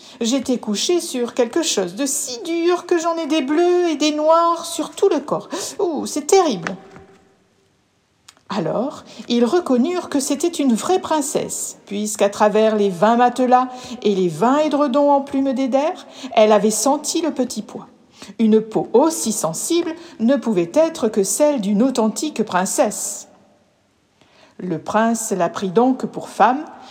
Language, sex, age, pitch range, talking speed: French, female, 60-79, 205-295 Hz, 150 wpm